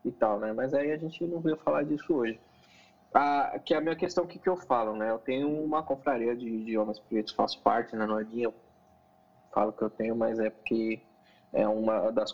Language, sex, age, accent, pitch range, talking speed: Portuguese, male, 20-39, Brazilian, 120-185 Hz, 225 wpm